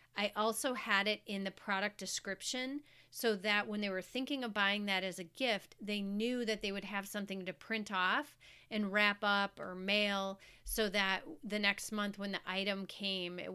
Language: English